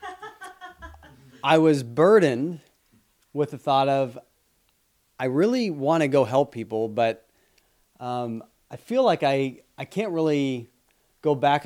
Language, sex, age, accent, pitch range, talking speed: English, male, 30-49, American, 115-145 Hz, 130 wpm